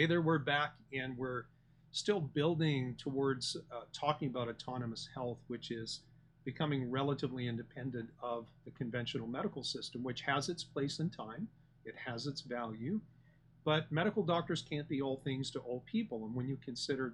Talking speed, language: 165 wpm, English